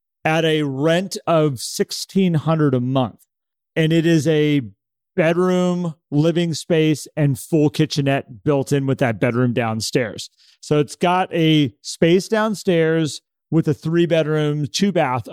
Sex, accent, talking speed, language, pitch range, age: male, American, 130 wpm, English, 135-170 Hz, 40-59